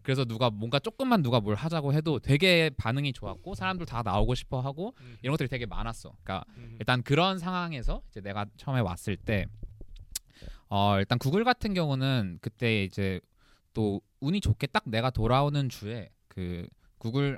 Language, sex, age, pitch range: Korean, male, 20-39, 105-140 Hz